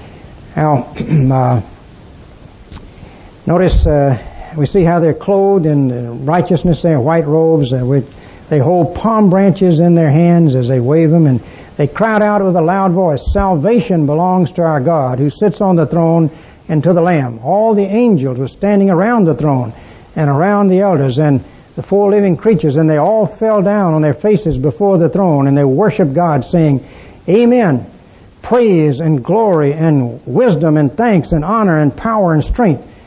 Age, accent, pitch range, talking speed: 60-79, American, 150-200 Hz, 170 wpm